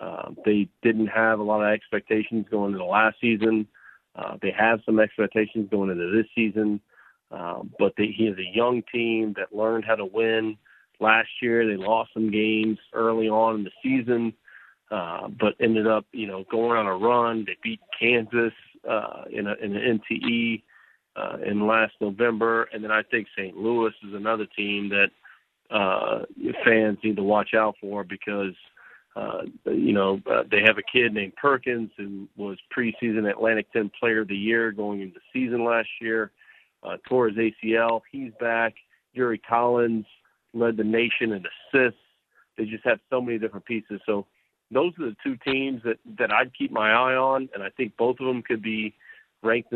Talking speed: 185 wpm